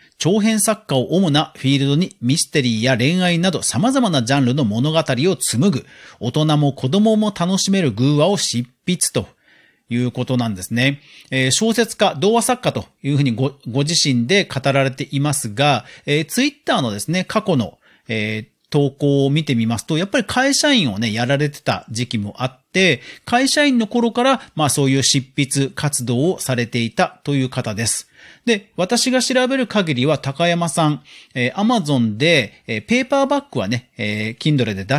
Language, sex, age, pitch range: Japanese, male, 40-59, 125-205 Hz